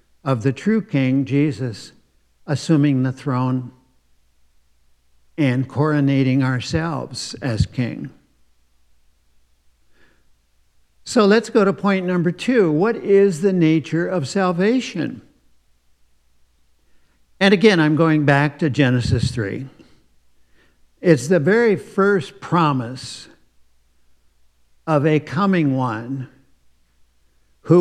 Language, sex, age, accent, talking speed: English, male, 60-79, American, 95 wpm